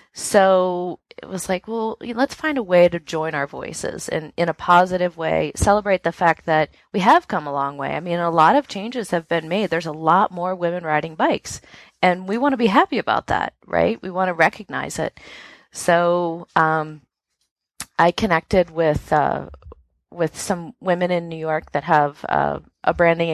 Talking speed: 195 wpm